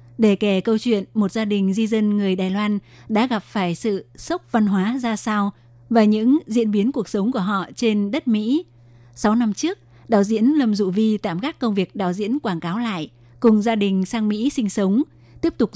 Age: 20-39